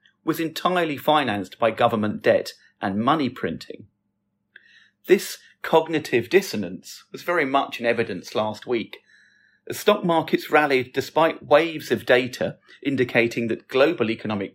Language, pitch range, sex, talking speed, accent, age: English, 115-160 Hz, male, 130 wpm, British, 40-59